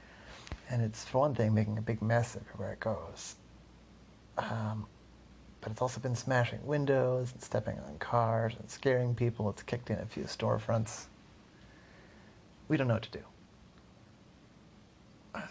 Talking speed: 150 wpm